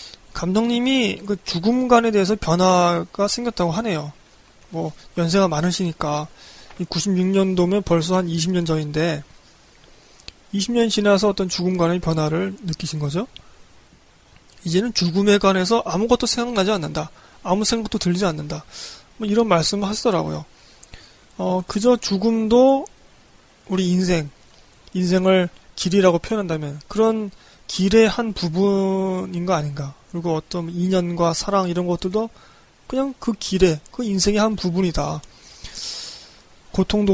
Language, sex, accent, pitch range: Korean, male, native, 170-205 Hz